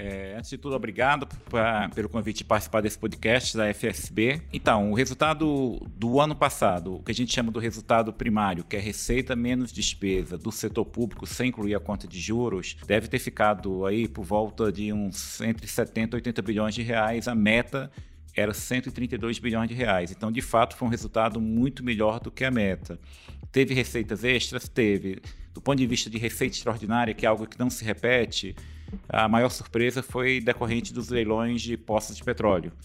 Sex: male